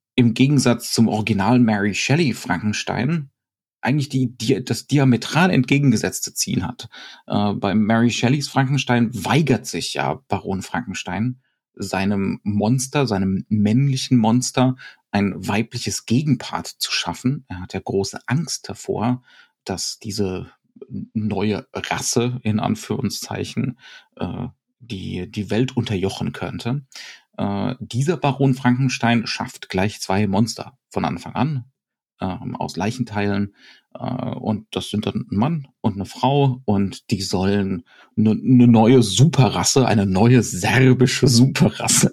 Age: 40-59